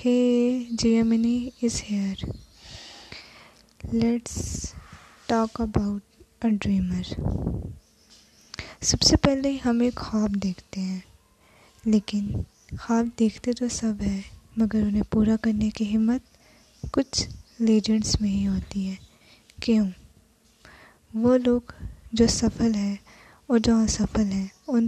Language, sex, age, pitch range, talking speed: Urdu, female, 10-29, 205-235 Hz, 110 wpm